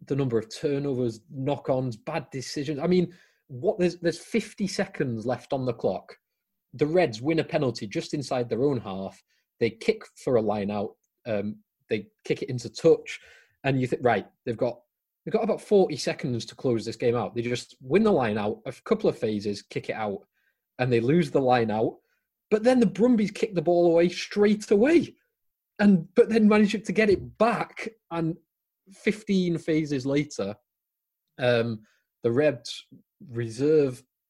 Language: English